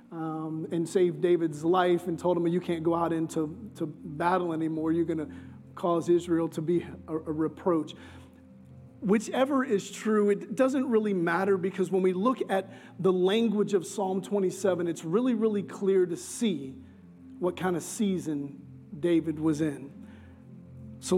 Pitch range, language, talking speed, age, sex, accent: 155-195 Hz, English, 160 wpm, 40-59, male, American